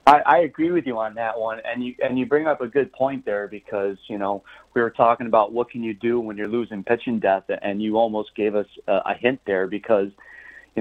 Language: English